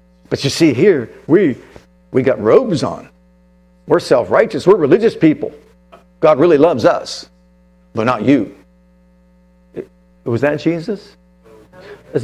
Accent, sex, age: American, male, 60-79